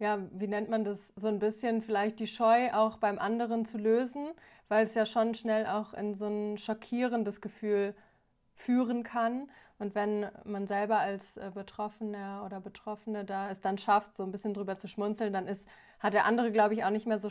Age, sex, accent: 20-39, female, German